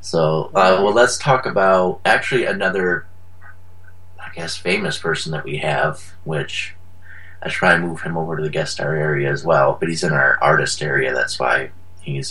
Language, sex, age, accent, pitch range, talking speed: English, male, 30-49, American, 80-95 Hz, 185 wpm